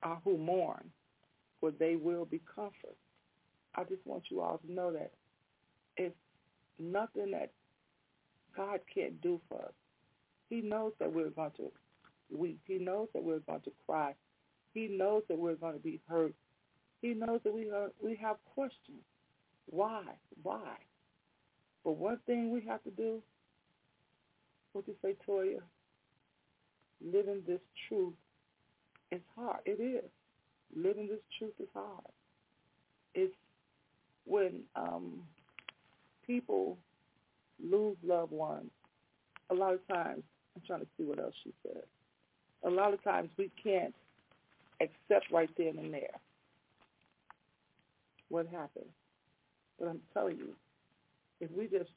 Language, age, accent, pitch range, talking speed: English, 50-69, American, 165-225 Hz, 135 wpm